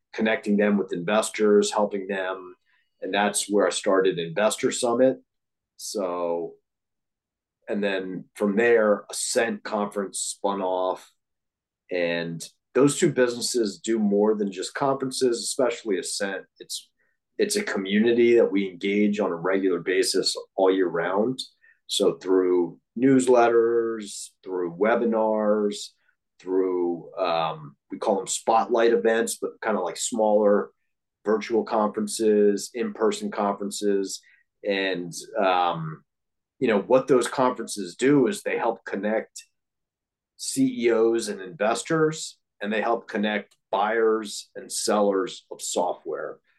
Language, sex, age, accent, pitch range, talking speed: English, male, 40-59, American, 95-120 Hz, 120 wpm